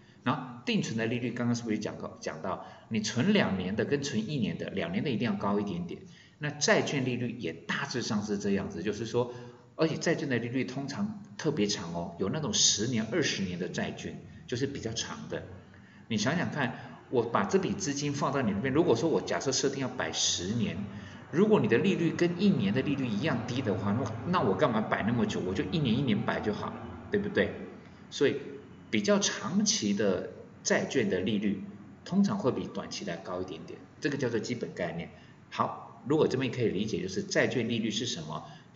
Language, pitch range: Chinese, 105-175 Hz